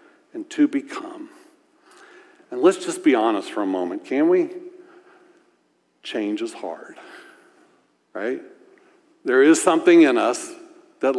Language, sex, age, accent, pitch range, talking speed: English, male, 60-79, American, 305-370 Hz, 125 wpm